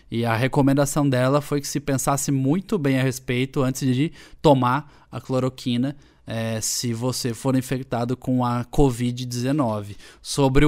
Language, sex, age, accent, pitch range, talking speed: Portuguese, male, 20-39, Brazilian, 125-145 Hz, 145 wpm